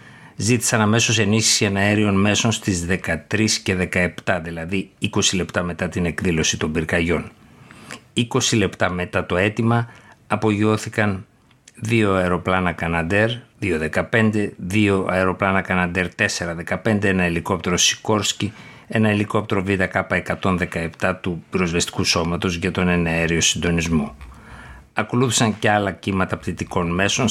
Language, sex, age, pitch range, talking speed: Greek, male, 50-69, 90-110 Hz, 115 wpm